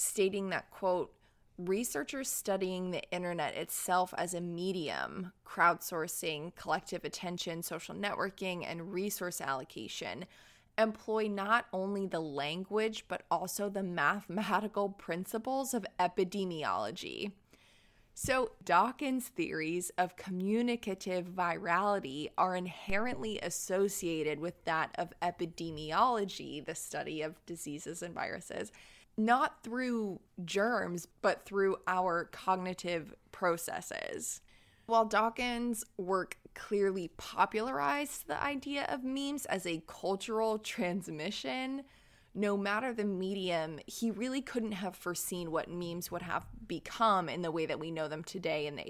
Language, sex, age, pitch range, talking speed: English, female, 20-39, 170-210 Hz, 115 wpm